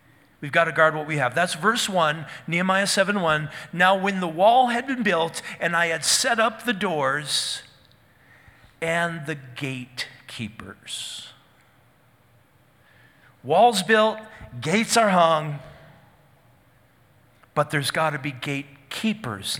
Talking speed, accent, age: 125 wpm, American, 40-59